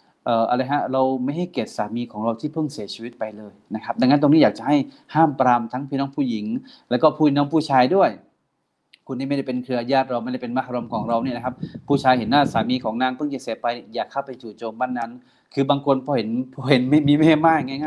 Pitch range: 125-150 Hz